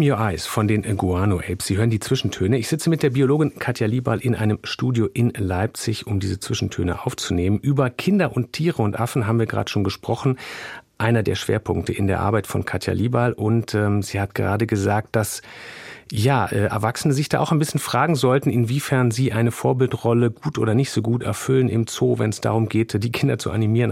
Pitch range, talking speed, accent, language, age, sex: 105-130 Hz, 205 wpm, German, German, 40-59, male